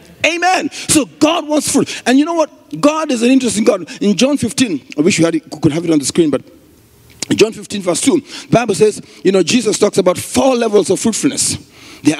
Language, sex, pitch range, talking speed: English, male, 165-275 Hz, 215 wpm